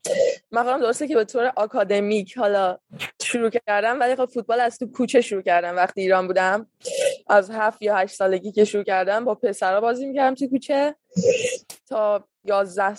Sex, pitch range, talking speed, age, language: female, 205-245 Hz, 165 wpm, 20-39, Persian